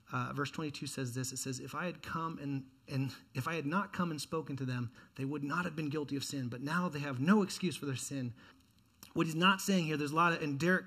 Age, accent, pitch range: 30-49, American, 140-205 Hz